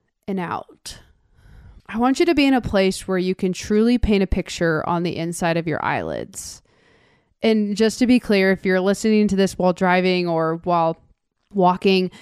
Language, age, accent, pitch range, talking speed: English, 20-39, American, 180-220 Hz, 185 wpm